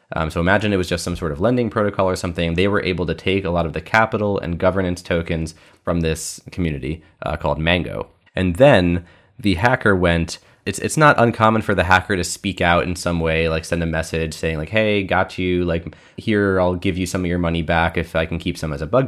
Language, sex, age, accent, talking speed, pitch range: English, male, 20-39, American, 240 wpm, 85-105 Hz